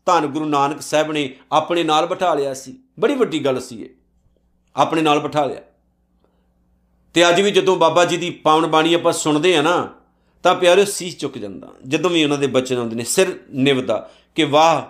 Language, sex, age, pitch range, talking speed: Punjabi, male, 50-69, 135-205 Hz, 195 wpm